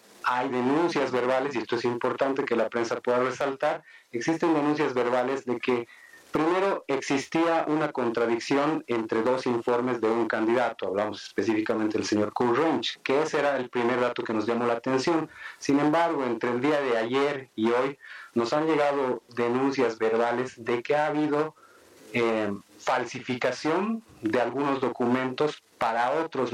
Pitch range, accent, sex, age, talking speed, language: 115-145 Hz, Mexican, male, 30-49, 155 wpm, Spanish